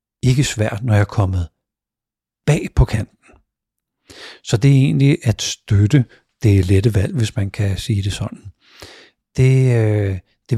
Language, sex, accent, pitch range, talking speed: Danish, male, native, 100-120 Hz, 155 wpm